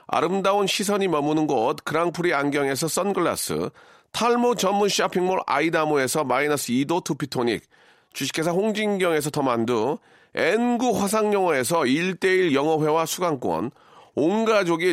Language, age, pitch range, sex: Korean, 40-59, 155-205 Hz, male